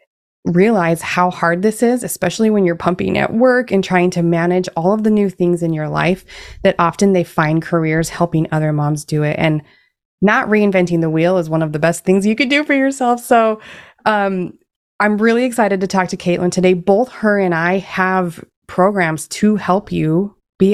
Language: English